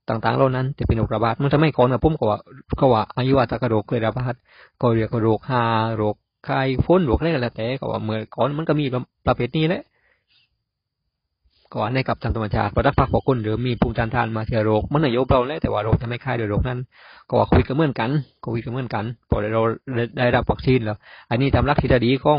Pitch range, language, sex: 110-130 Hz, Thai, male